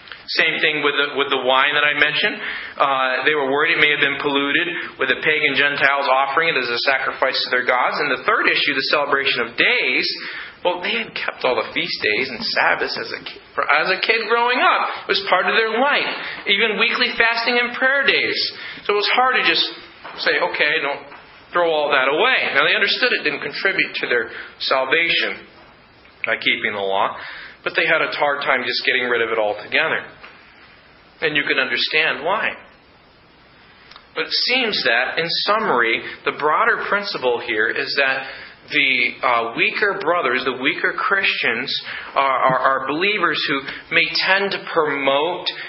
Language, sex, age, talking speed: English, male, 40-59, 185 wpm